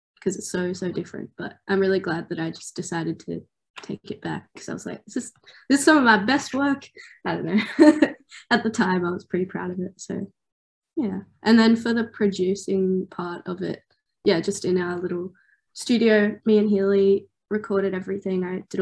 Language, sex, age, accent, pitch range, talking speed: English, female, 20-39, Australian, 185-210 Hz, 205 wpm